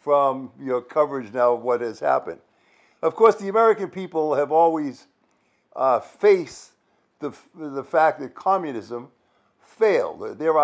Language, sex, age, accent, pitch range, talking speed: English, male, 60-79, American, 140-195 Hz, 135 wpm